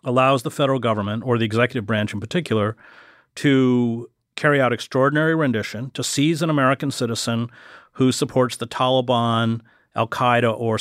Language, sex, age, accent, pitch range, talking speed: English, male, 40-59, American, 115-135 Hz, 150 wpm